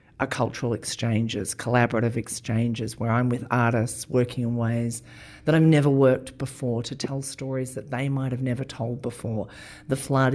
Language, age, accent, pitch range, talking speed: English, 40-59, Australian, 120-140 Hz, 170 wpm